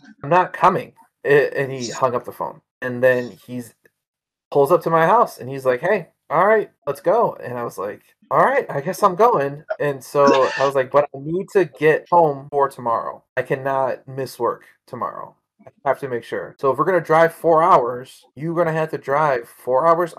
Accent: American